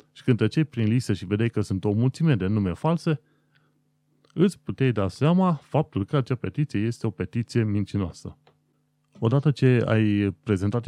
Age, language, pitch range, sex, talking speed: 30-49, Romanian, 95-135 Hz, male, 165 wpm